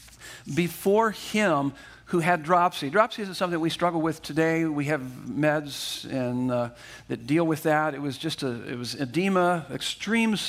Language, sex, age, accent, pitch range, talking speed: English, male, 50-69, American, 145-180 Hz, 165 wpm